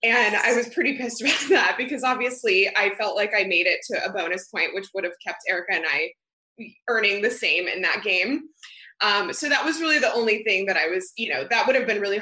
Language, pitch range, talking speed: English, 200-255 Hz, 245 wpm